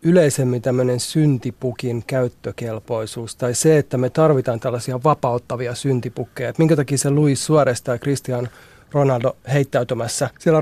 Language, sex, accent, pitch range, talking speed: Finnish, male, native, 125-155 Hz, 130 wpm